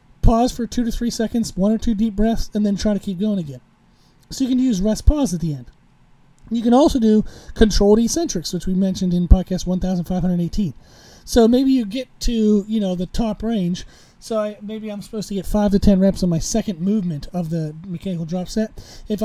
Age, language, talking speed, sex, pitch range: 40-59, English, 210 wpm, male, 170-220 Hz